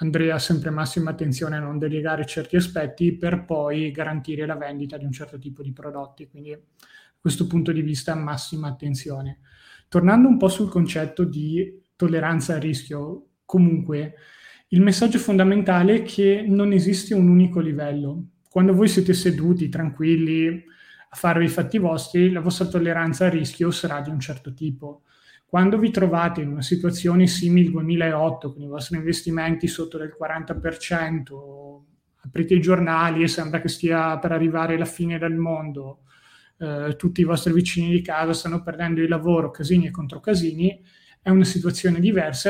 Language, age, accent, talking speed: Italian, 20-39, native, 165 wpm